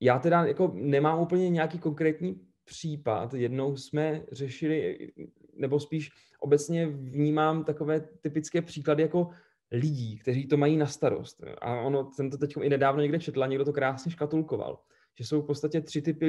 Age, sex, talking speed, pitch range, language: 20-39, male, 160 wpm, 130-150 Hz, Czech